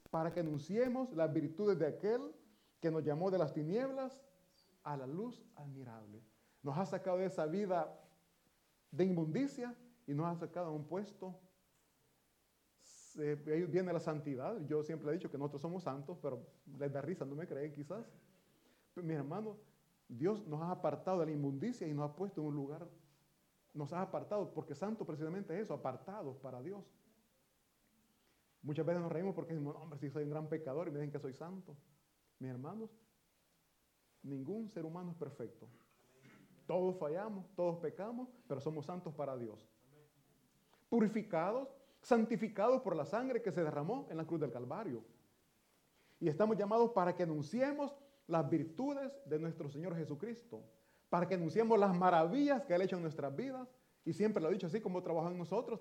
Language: Italian